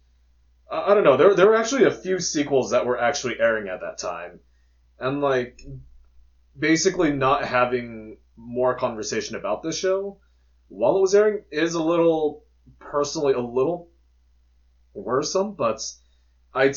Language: English